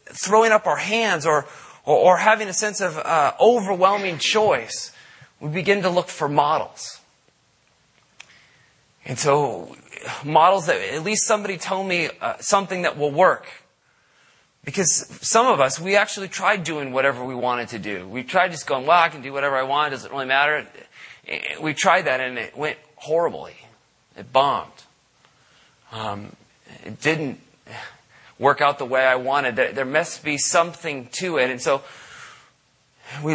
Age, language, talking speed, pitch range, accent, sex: 30-49, English, 160 wpm, 140-180 Hz, American, male